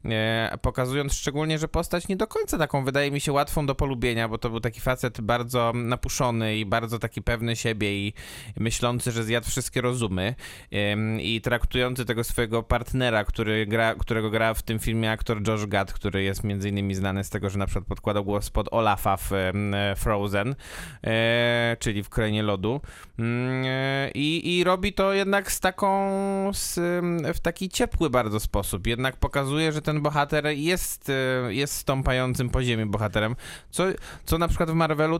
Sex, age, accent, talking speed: male, 20-39, native, 165 wpm